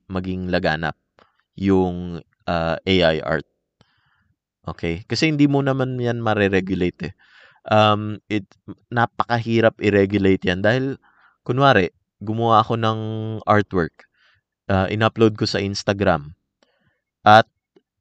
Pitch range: 95-125 Hz